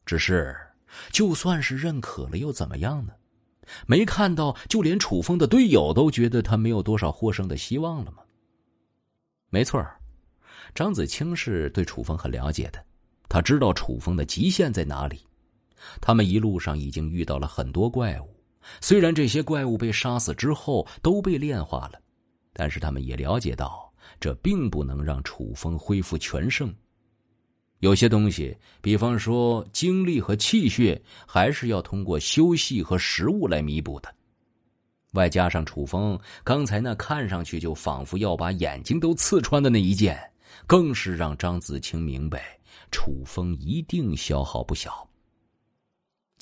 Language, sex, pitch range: Chinese, male, 80-125 Hz